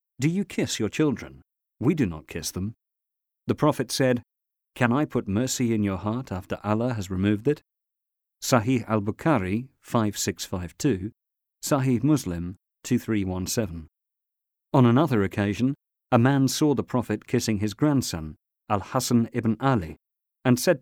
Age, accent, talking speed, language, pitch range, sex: 40-59, British, 135 wpm, English, 95-125 Hz, male